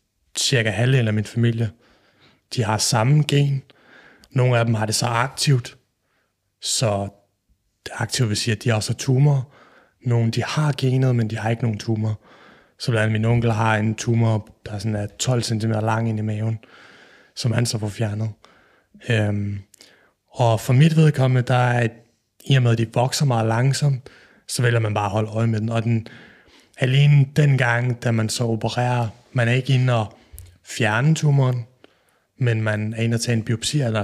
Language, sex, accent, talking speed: Danish, male, native, 175 wpm